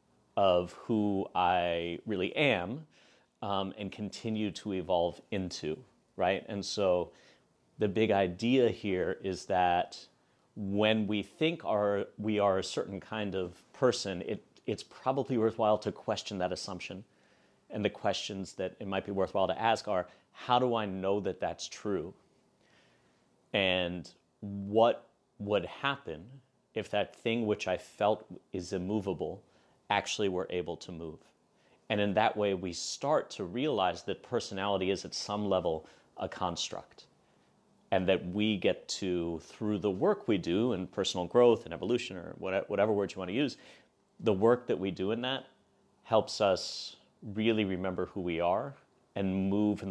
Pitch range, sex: 90-105 Hz, male